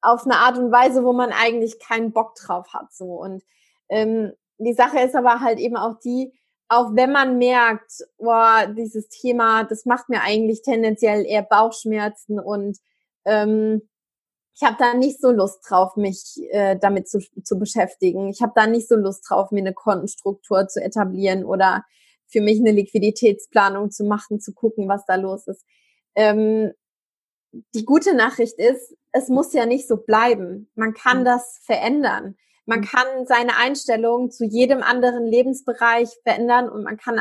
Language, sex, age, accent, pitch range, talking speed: German, female, 20-39, German, 210-240 Hz, 170 wpm